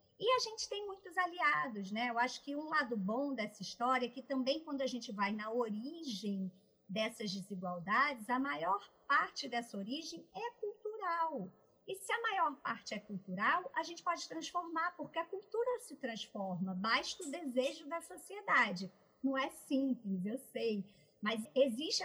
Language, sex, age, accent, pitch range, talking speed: Portuguese, male, 50-69, Brazilian, 210-290 Hz, 165 wpm